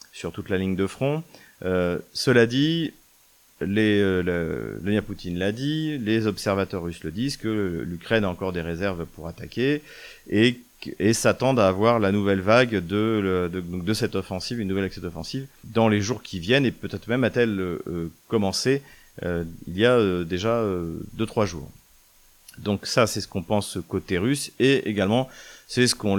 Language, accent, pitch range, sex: French, French, 90-115 Hz, male